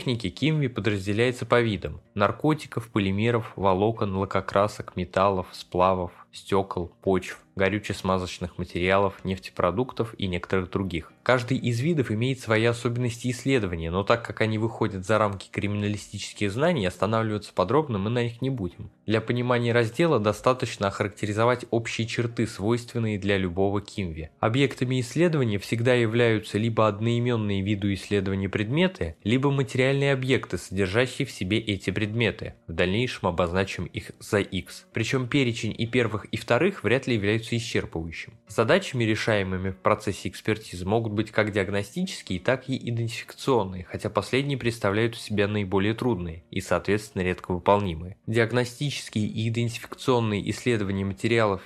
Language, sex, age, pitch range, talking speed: Russian, male, 20-39, 100-120 Hz, 130 wpm